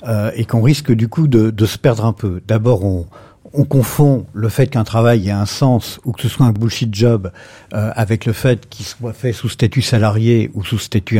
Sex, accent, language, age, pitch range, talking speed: male, French, French, 50-69, 105-125 Hz, 230 wpm